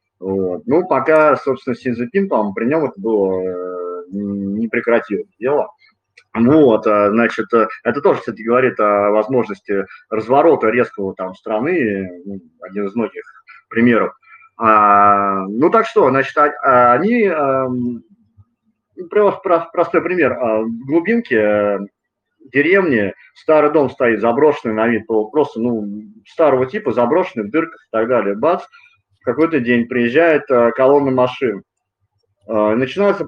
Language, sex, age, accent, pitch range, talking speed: Russian, male, 30-49, native, 100-145 Hz, 135 wpm